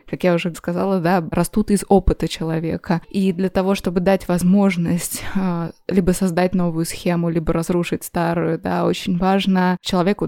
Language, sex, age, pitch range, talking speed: Russian, female, 20-39, 170-195 Hz, 145 wpm